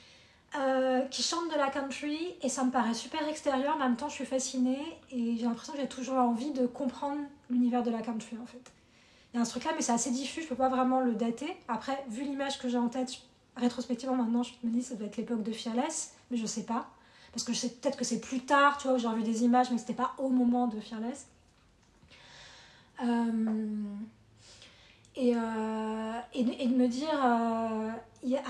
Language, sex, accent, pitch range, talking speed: French, female, French, 230-265 Hz, 225 wpm